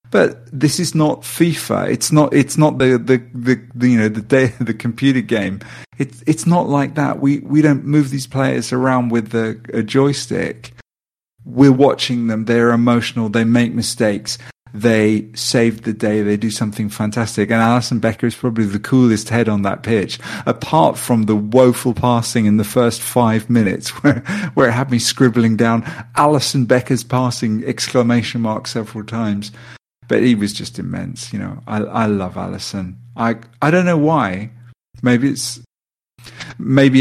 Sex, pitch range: male, 115-135 Hz